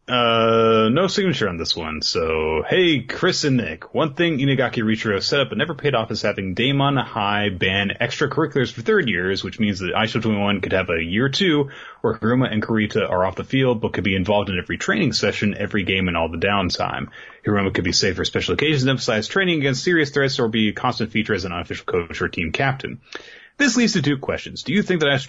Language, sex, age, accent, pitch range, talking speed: English, male, 30-49, American, 95-140 Hz, 230 wpm